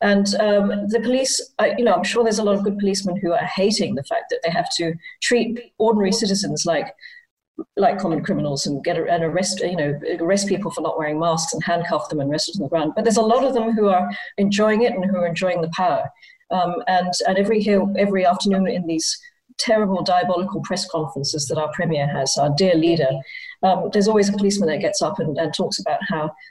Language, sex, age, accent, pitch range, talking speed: English, female, 40-59, British, 165-215 Hz, 230 wpm